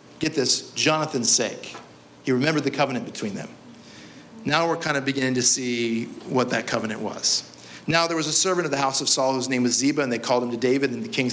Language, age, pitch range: English, 40-59, 115-145 Hz